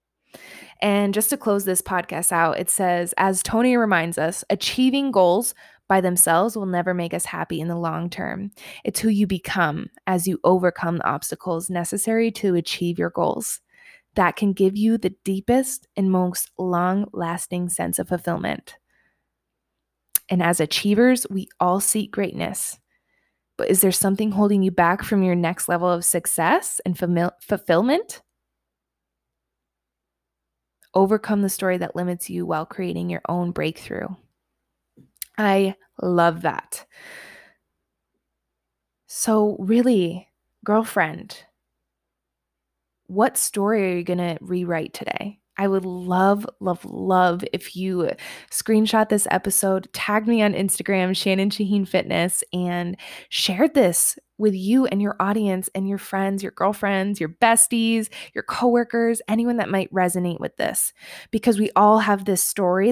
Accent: American